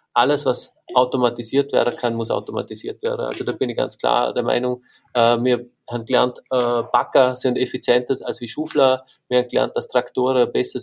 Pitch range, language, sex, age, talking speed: 115-130 Hz, German, male, 30-49, 185 wpm